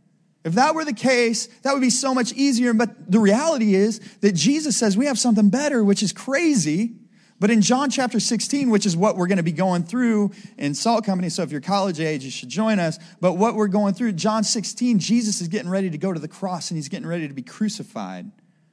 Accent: American